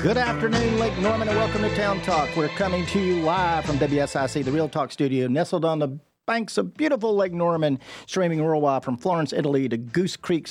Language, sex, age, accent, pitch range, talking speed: English, male, 50-69, American, 130-170 Hz, 205 wpm